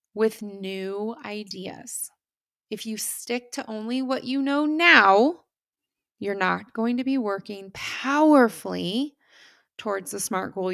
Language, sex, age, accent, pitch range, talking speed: English, female, 20-39, American, 195-260 Hz, 130 wpm